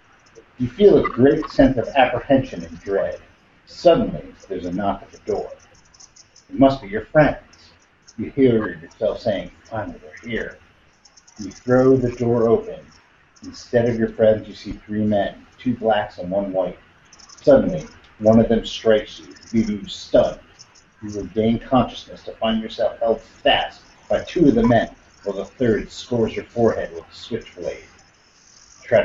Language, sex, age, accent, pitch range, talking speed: English, male, 50-69, American, 95-120 Hz, 165 wpm